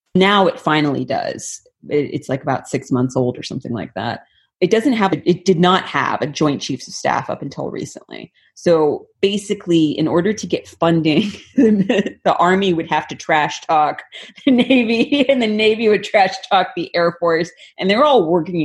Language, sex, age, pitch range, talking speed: English, female, 30-49, 145-180 Hz, 190 wpm